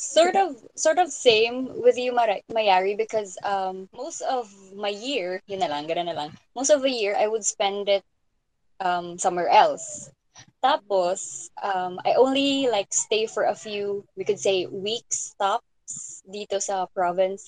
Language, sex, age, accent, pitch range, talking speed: Filipino, female, 20-39, native, 190-245 Hz, 160 wpm